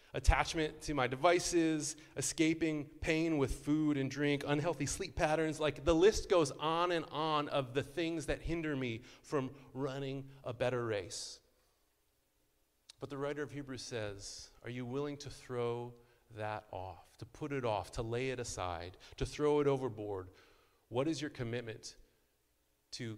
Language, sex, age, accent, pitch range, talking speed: English, male, 30-49, American, 115-150 Hz, 160 wpm